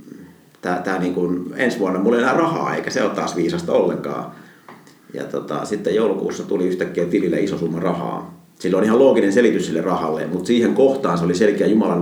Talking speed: 200 wpm